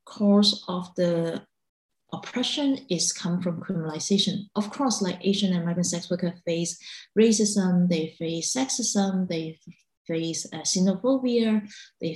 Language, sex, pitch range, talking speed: English, female, 175-210 Hz, 125 wpm